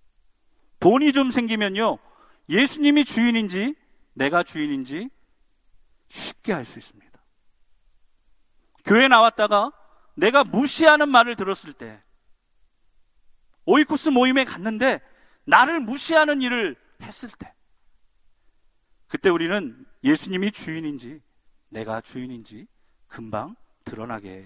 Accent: native